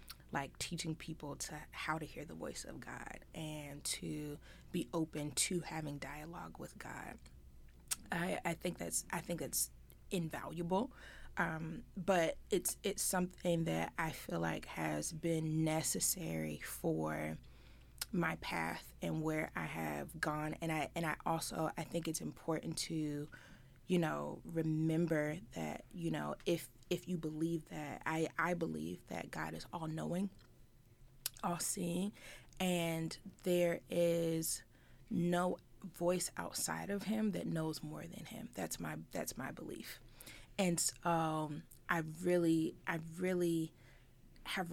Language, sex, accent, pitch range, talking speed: English, female, American, 130-170 Hz, 140 wpm